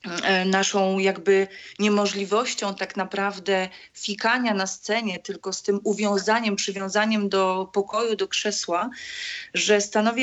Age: 30-49